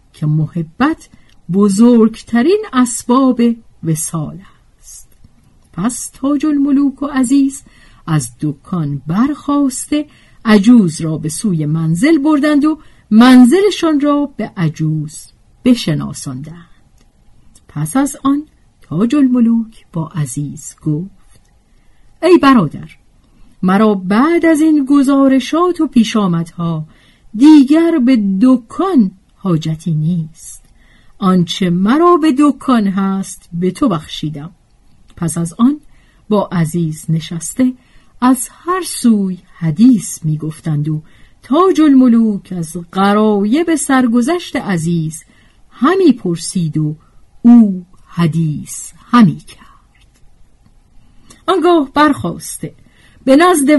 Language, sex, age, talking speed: Persian, female, 50-69, 95 wpm